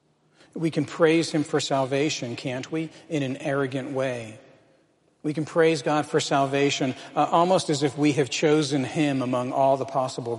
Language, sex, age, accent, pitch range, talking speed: English, male, 40-59, American, 125-145 Hz, 175 wpm